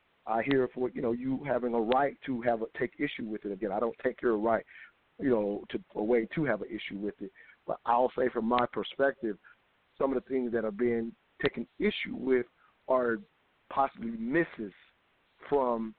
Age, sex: 50-69, male